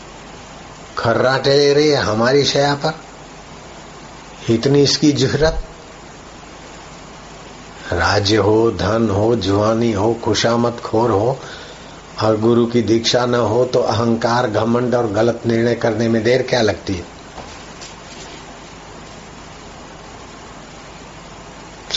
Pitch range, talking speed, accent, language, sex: 110-120 Hz, 100 wpm, native, Hindi, male